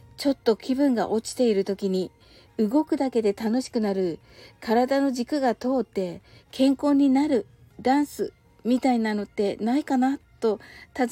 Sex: female